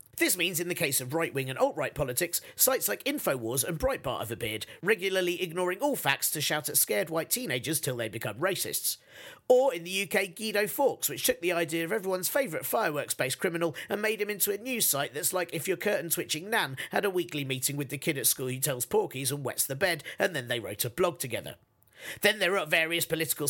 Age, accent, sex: 40-59, British, male